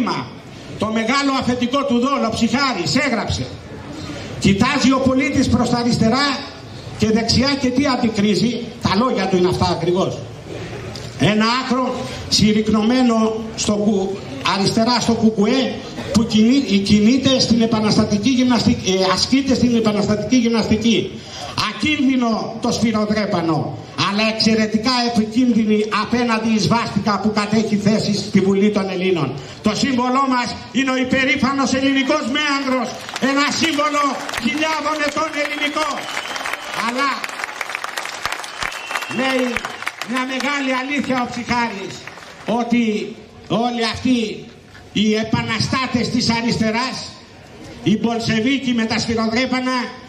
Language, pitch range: Greek, 215-255 Hz